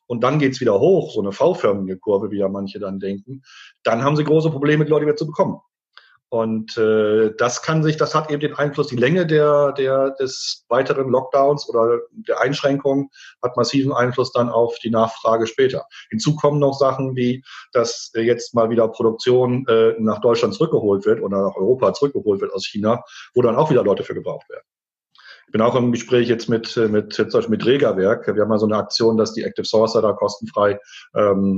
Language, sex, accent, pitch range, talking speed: German, male, German, 105-140 Hz, 205 wpm